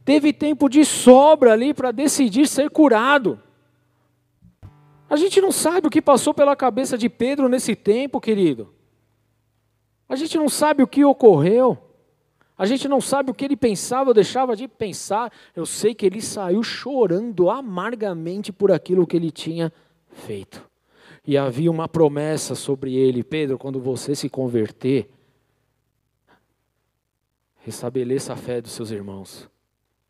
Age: 50-69